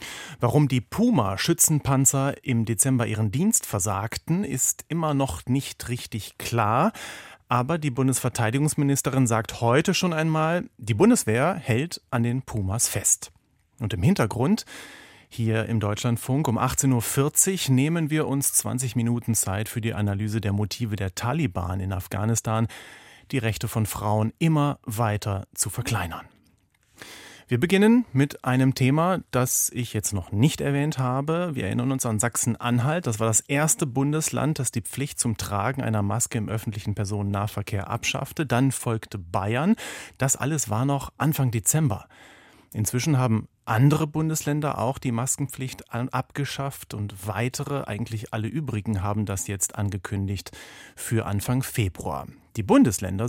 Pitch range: 110-140 Hz